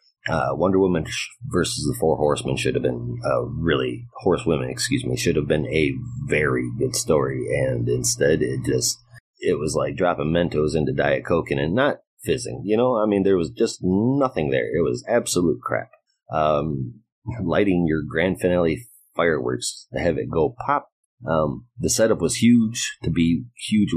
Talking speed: 175 wpm